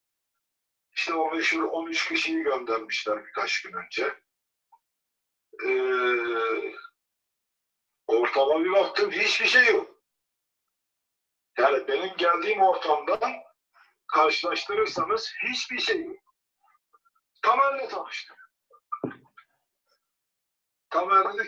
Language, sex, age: Turkish, male, 50-69